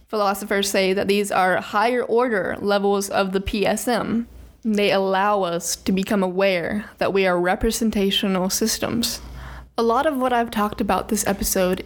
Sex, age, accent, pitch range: female, 10-29, American, 190-225 Hz